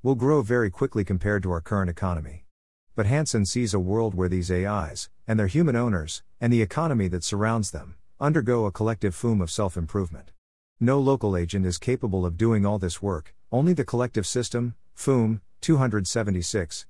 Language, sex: English, male